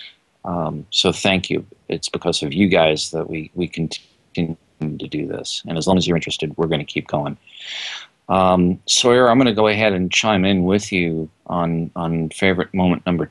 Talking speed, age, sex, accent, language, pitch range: 200 wpm, 40-59, male, American, English, 85-100 Hz